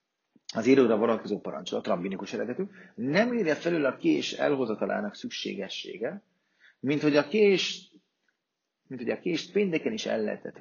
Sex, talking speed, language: male, 140 wpm, Hungarian